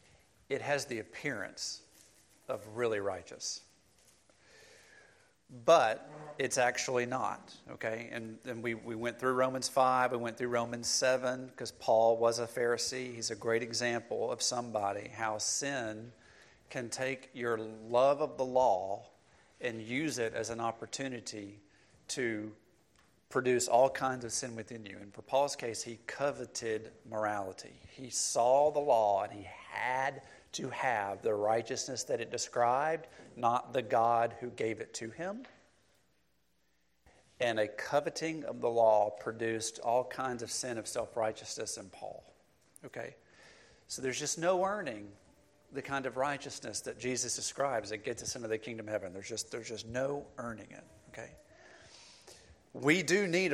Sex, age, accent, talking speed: male, 40-59, American, 150 wpm